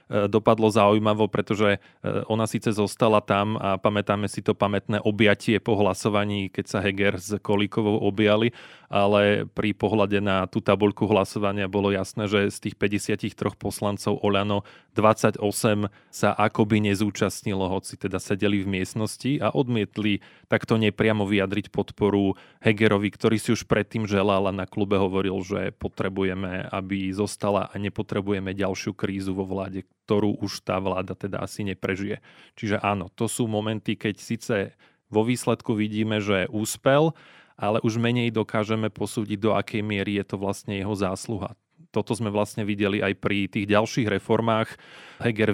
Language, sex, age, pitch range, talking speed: Slovak, male, 20-39, 100-110 Hz, 150 wpm